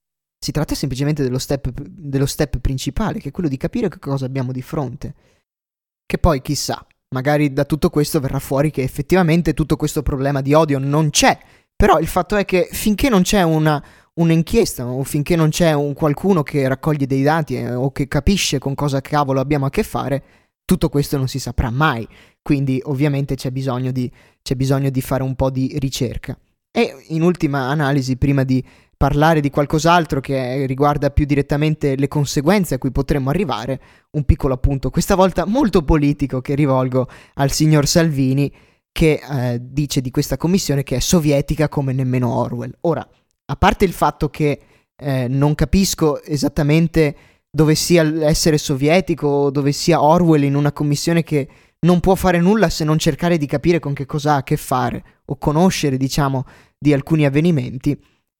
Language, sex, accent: Italian, male, native